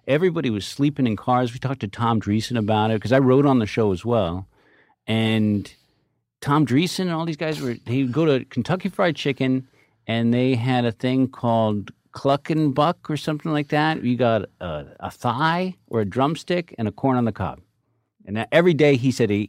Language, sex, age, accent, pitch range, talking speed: English, male, 50-69, American, 105-135 Hz, 200 wpm